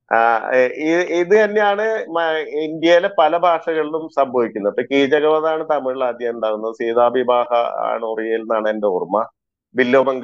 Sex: male